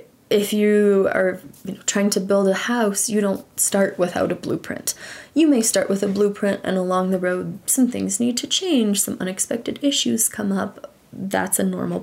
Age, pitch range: 20-39, 190-235 Hz